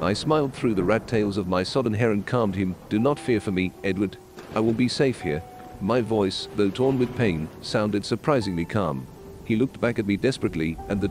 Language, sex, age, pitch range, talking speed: English, male, 40-59, 100-125 Hz, 220 wpm